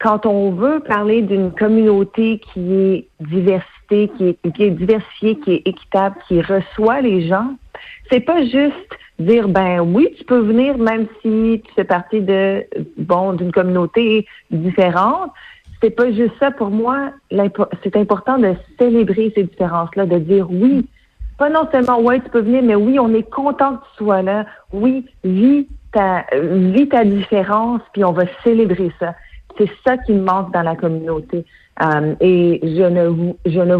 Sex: female